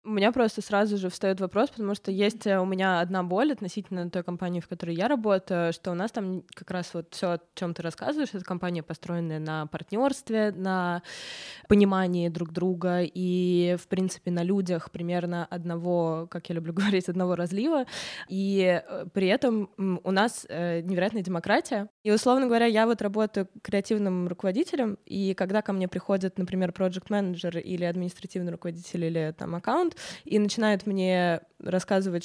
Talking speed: 165 wpm